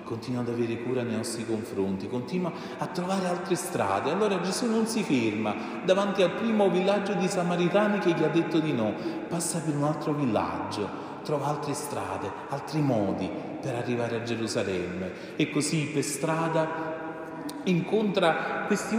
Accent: native